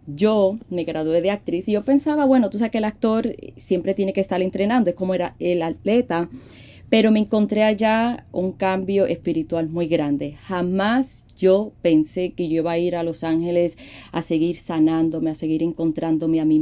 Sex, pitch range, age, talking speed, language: female, 160-190 Hz, 30-49, 190 wpm, Spanish